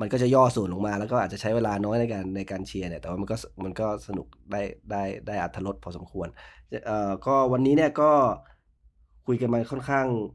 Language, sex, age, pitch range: Thai, male, 20-39, 95-110 Hz